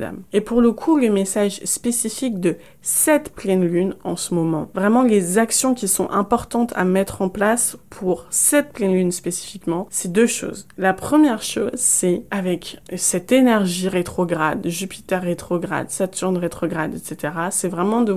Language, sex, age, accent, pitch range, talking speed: French, female, 20-39, French, 180-230 Hz, 160 wpm